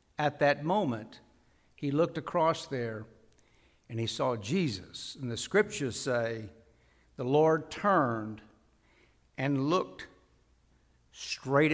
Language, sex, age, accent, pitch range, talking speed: English, male, 60-79, American, 90-135 Hz, 105 wpm